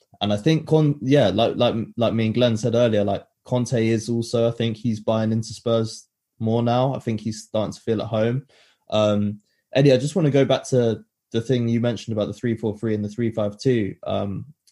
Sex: male